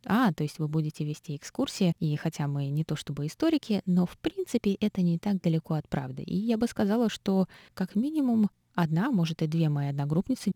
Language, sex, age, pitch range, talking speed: Russian, female, 20-39, 155-195 Hz, 205 wpm